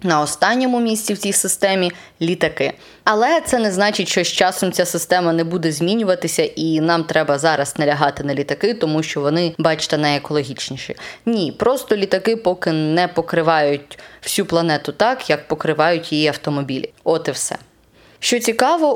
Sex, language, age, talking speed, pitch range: female, Ukrainian, 20-39, 160 wpm, 155-205 Hz